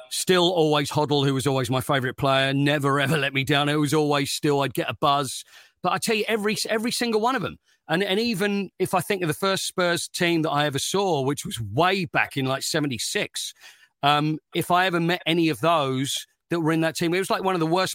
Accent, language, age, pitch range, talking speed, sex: British, English, 40-59, 135-175 Hz, 245 wpm, male